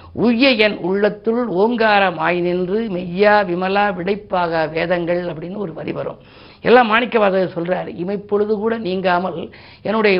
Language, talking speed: Tamil, 120 wpm